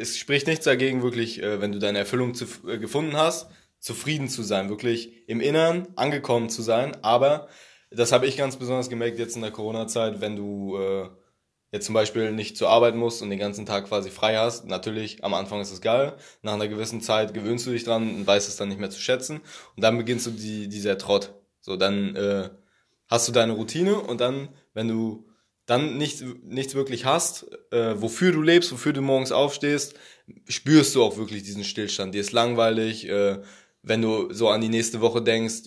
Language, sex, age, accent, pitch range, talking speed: German, male, 20-39, German, 105-120 Hz, 200 wpm